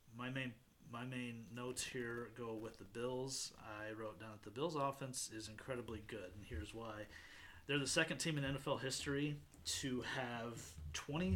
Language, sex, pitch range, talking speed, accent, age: English, male, 105-130 Hz, 175 wpm, American, 30-49